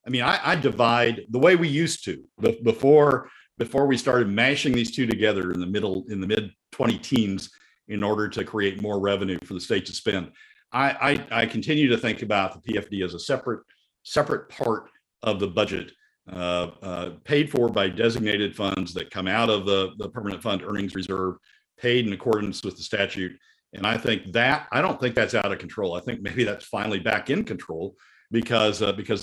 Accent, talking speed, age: American, 200 wpm, 50-69